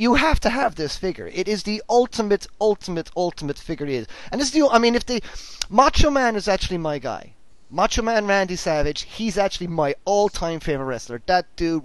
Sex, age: male, 30-49